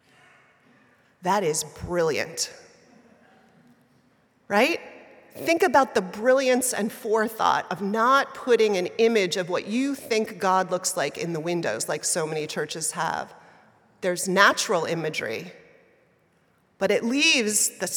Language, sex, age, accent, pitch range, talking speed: English, female, 30-49, American, 175-210 Hz, 125 wpm